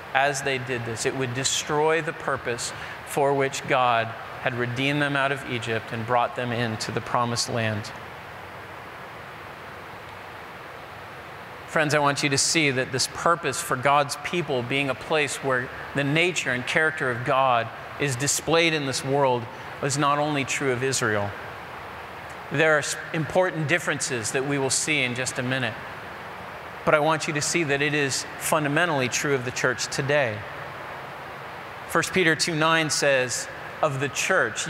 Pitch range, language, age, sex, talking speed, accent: 130-165 Hz, English, 40-59, male, 160 wpm, American